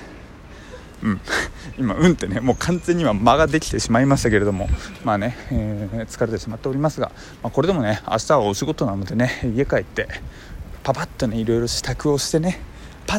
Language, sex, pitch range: Japanese, male, 110-160 Hz